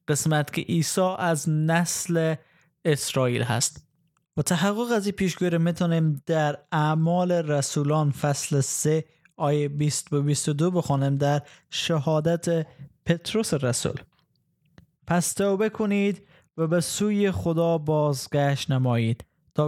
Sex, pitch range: male, 145-175 Hz